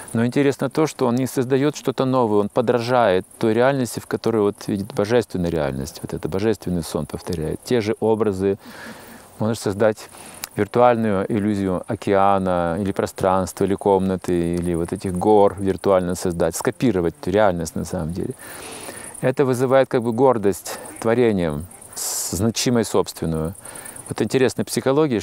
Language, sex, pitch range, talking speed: Russian, male, 100-130 Hz, 140 wpm